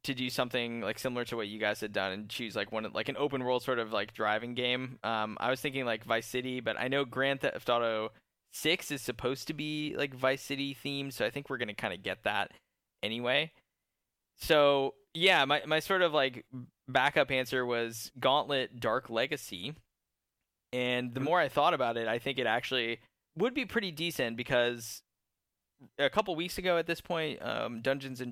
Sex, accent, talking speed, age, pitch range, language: male, American, 200 wpm, 10-29, 115-135 Hz, English